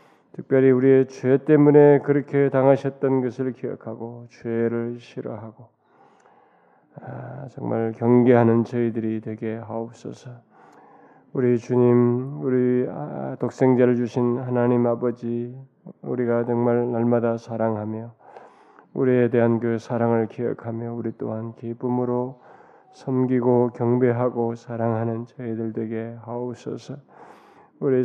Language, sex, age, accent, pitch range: Korean, male, 20-39, native, 115-130 Hz